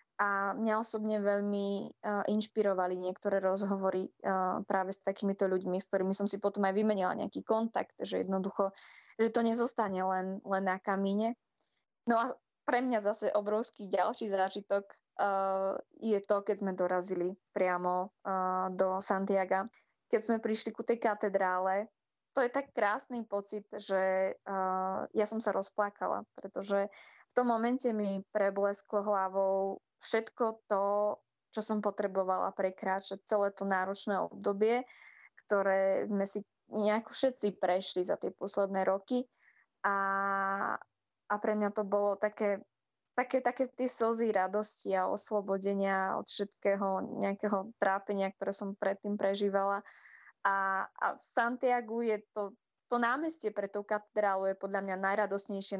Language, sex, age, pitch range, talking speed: Slovak, female, 20-39, 195-215 Hz, 140 wpm